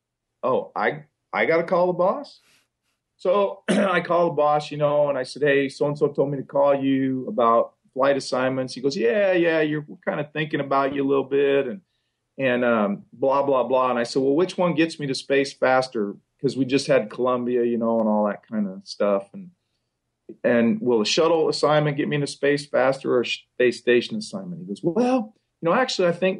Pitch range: 120-150 Hz